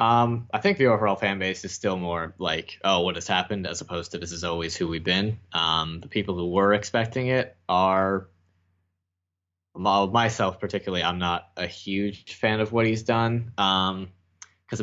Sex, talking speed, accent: male, 180 wpm, American